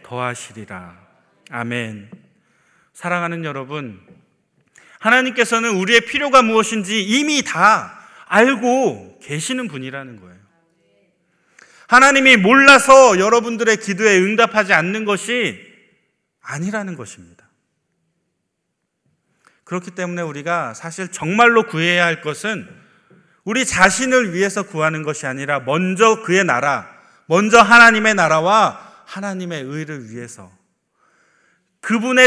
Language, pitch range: Korean, 150-225 Hz